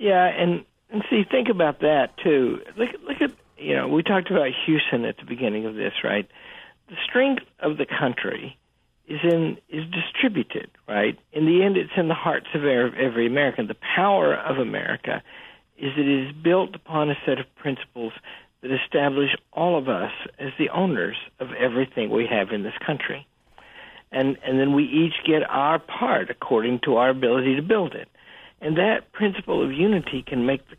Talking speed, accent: 185 wpm, American